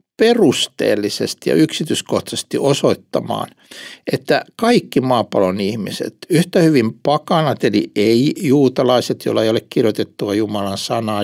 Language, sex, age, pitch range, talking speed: Finnish, male, 60-79, 105-180 Hz, 100 wpm